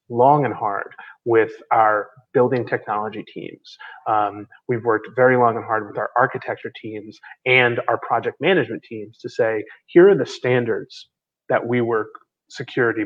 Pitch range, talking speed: 115-145 Hz, 155 wpm